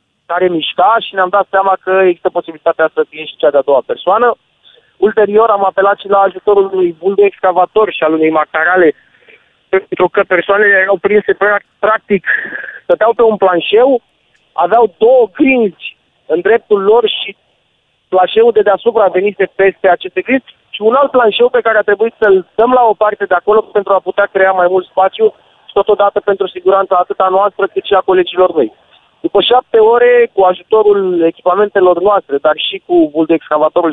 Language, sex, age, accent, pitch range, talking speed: Romanian, male, 30-49, native, 175-210 Hz, 180 wpm